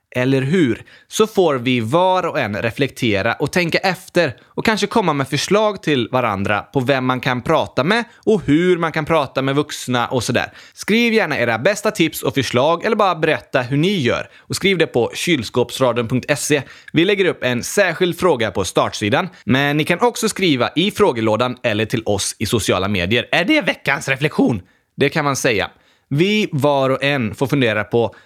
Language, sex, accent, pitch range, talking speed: Swedish, male, native, 120-180 Hz, 185 wpm